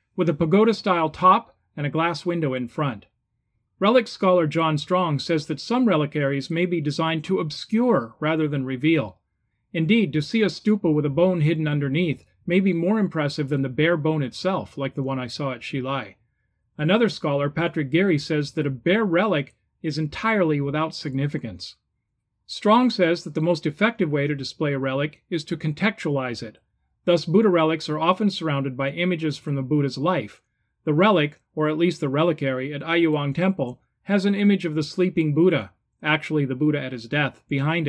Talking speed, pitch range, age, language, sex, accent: 185 wpm, 135-180 Hz, 40-59, English, male, American